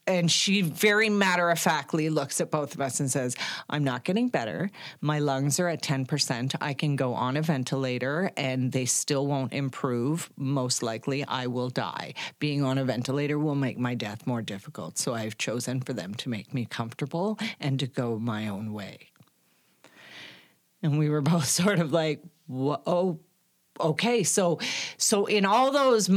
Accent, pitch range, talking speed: American, 135-195 Hz, 170 wpm